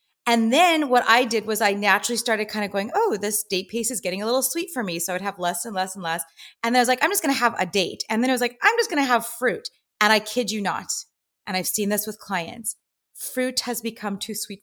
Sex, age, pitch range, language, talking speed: female, 30-49, 210-255 Hz, English, 290 wpm